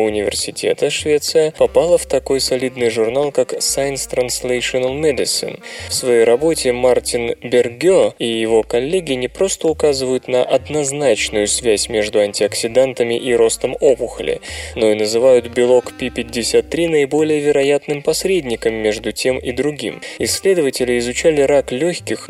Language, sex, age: Russian, male, 20-39